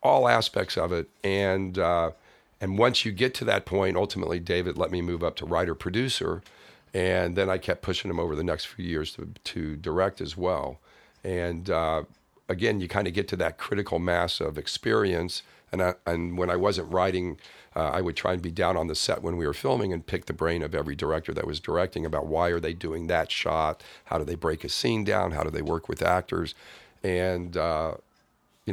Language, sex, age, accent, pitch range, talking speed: English, male, 50-69, American, 85-95 Hz, 220 wpm